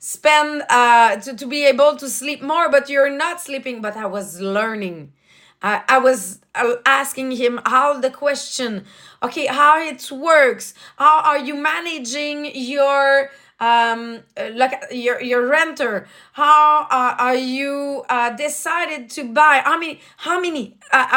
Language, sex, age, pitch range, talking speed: English, female, 30-49, 230-290 Hz, 155 wpm